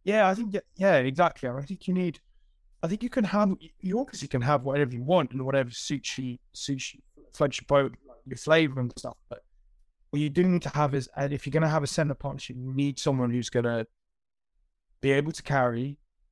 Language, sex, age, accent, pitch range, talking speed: English, male, 20-39, British, 120-140 Hz, 225 wpm